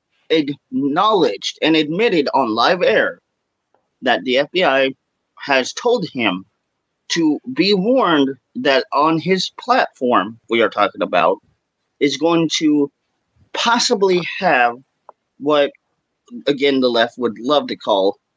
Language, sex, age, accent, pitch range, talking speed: English, male, 30-49, American, 135-205 Hz, 120 wpm